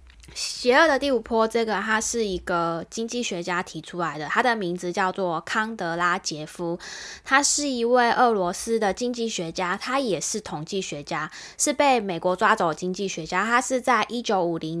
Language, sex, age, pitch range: Chinese, female, 10-29, 170-220 Hz